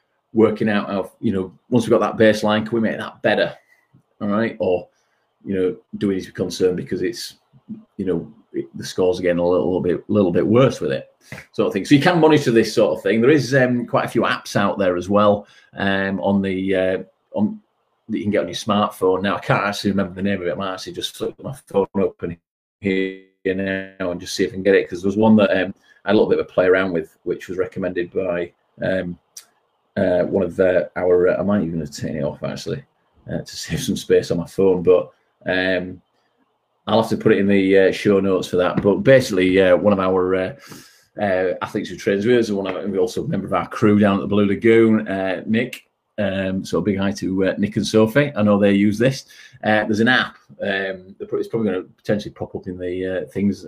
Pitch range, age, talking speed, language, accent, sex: 95-105 Hz, 30-49, 250 wpm, English, British, male